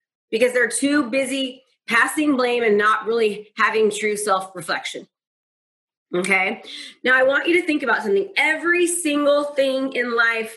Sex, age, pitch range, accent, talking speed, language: female, 30-49, 220-305 Hz, American, 150 wpm, English